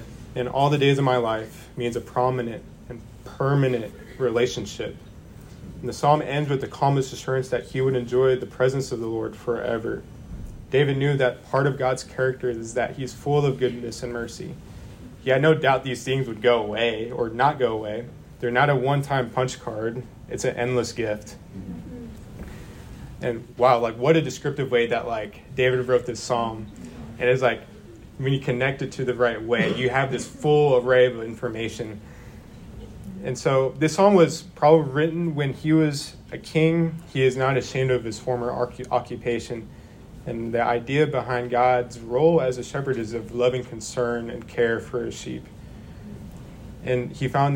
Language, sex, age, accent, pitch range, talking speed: English, male, 20-39, American, 120-130 Hz, 180 wpm